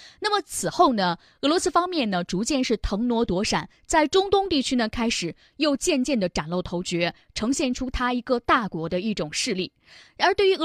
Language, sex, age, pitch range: Chinese, female, 20-39, 200-280 Hz